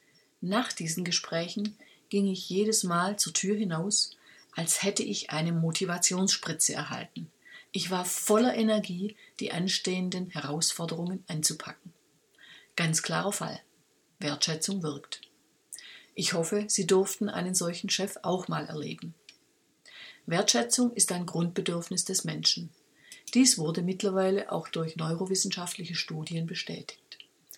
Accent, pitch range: German, 165-210 Hz